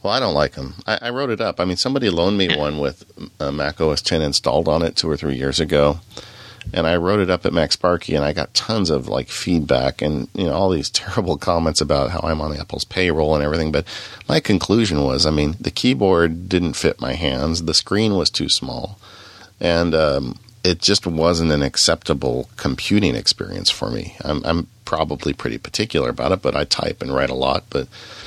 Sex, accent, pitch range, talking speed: male, American, 70-95 Hz, 215 wpm